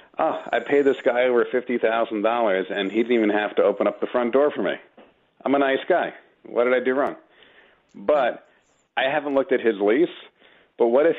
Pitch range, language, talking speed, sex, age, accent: 110-135 Hz, English, 210 wpm, male, 40-59, American